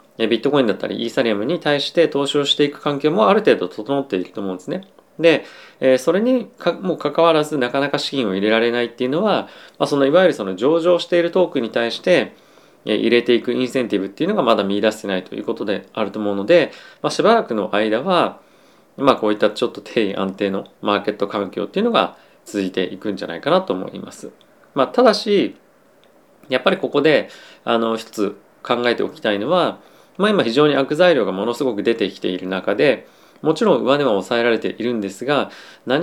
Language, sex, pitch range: Japanese, male, 110-150 Hz